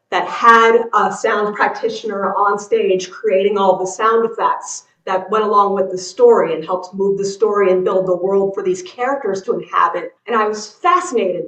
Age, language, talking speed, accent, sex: 40-59, English, 190 wpm, American, female